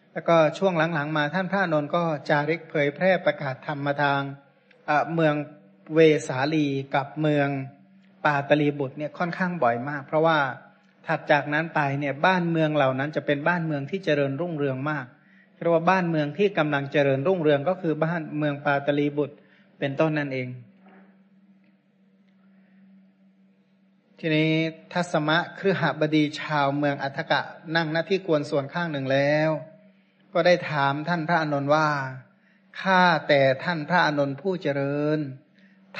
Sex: male